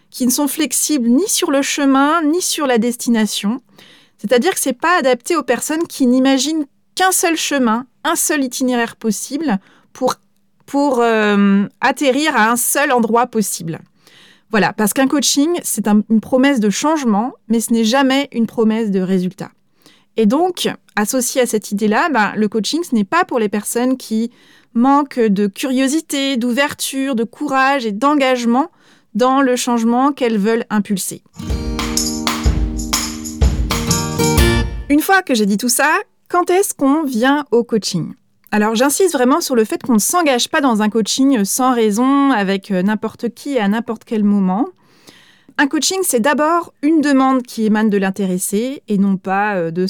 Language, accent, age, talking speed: French, French, 30-49, 165 wpm